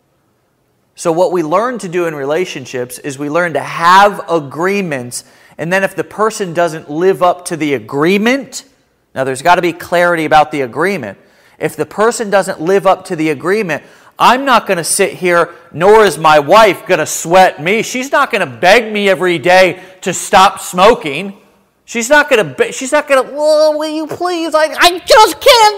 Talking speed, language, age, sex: 195 wpm, English, 40-59, male